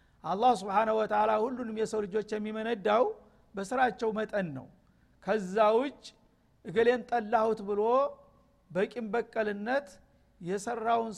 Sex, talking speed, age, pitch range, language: male, 95 wpm, 50-69, 190-235 Hz, Amharic